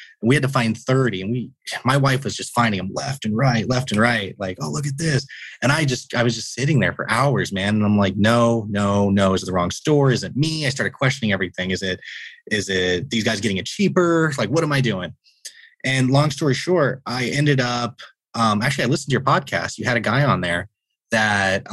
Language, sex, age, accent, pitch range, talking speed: English, male, 20-39, American, 100-130 Hz, 245 wpm